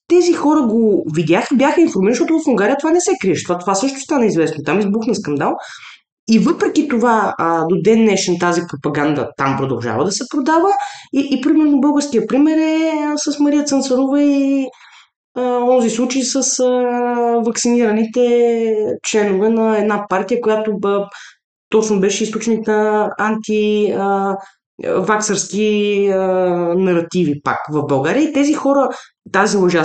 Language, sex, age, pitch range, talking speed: Bulgarian, female, 20-39, 175-265 Hz, 150 wpm